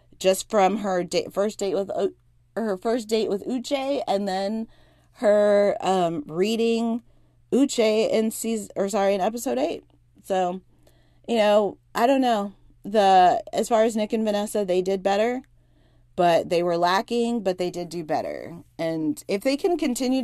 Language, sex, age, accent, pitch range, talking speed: English, female, 30-49, American, 170-210 Hz, 165 wpm